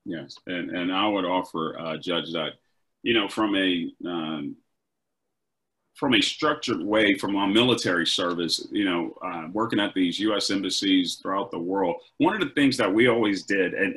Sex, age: male, 40-59